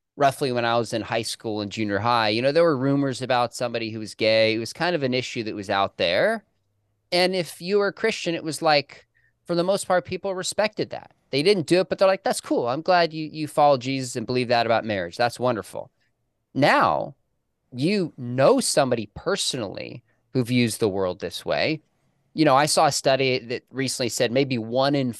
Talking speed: 215 wpm